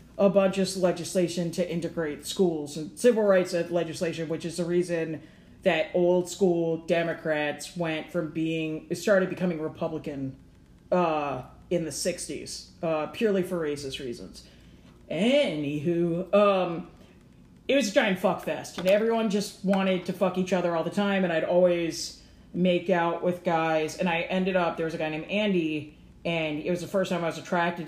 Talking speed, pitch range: 170 wpm, 160-195 Hz